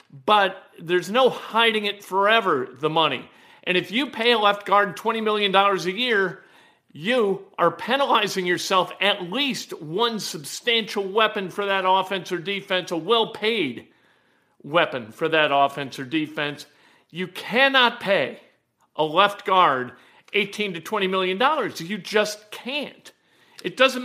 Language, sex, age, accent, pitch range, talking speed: English, male, 50-69, American, 175-235 Hz, 140 wpm